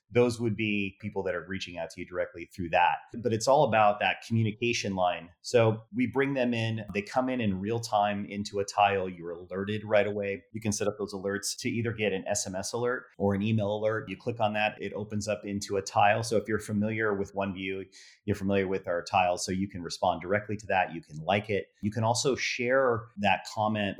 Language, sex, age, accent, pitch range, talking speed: English, male, 30-49, American, 95-110 Hz, 230 wpm